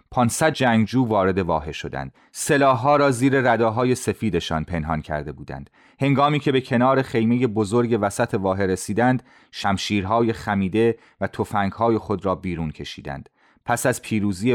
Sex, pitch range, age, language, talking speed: male, 95-130 Hz, 30-49, Persian, 135 wpm